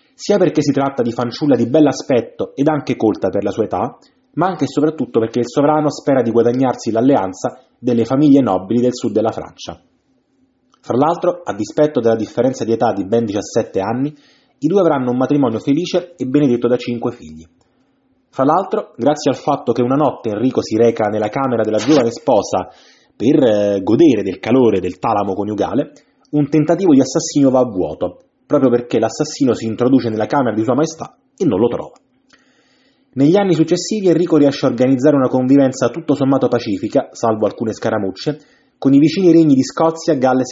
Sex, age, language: male, 30-49, Italian